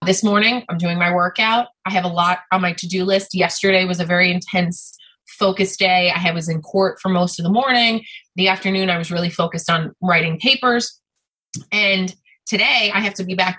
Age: 20-39